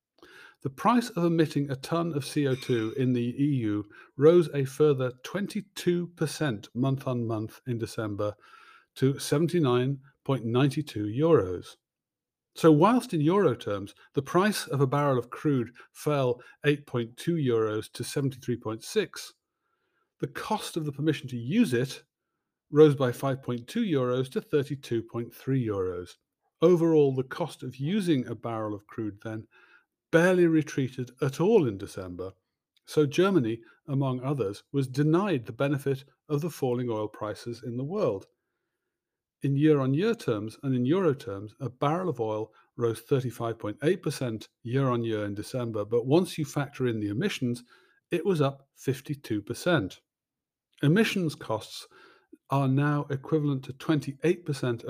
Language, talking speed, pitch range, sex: English, 130 wpm, 120-155 Hz, male